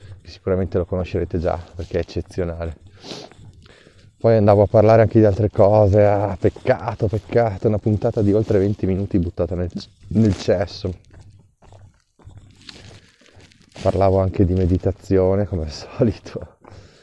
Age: 20-39